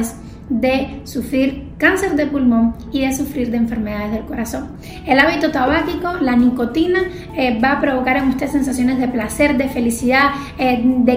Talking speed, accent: 160 wpm, American